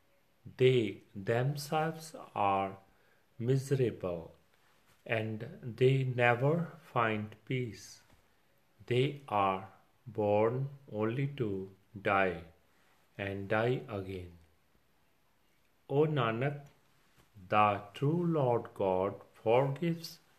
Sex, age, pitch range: male, 40-59, 100-135 Hz